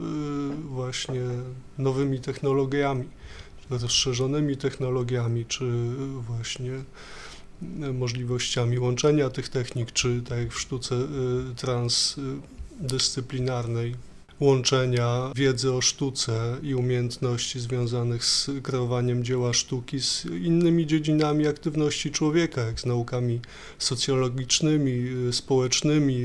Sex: male